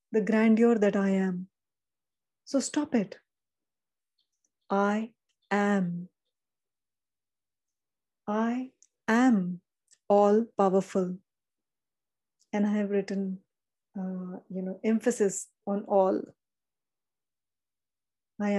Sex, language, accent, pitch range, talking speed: female, Hindi, native, 195-225 Hz, 80 wpm